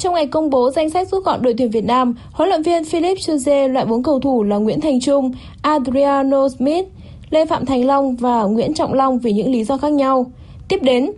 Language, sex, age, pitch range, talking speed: Vietnamese, female, 10-29, 235-295 Hz, 230 wpm